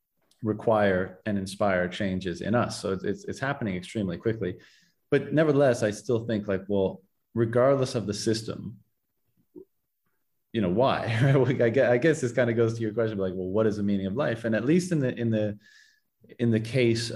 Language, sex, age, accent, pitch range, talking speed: English, male, 30-49, American, 100-115 Hz, 195 wpm